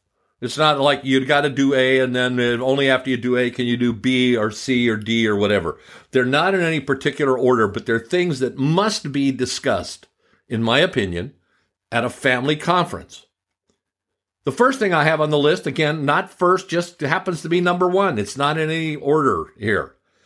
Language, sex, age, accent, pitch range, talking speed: English, male, 50-69, American, 125-180 Hz, 200 wpm